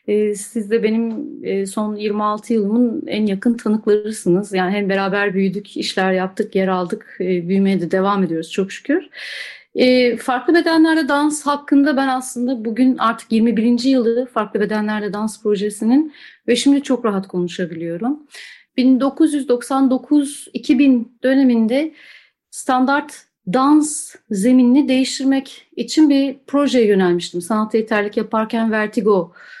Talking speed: 115 wpm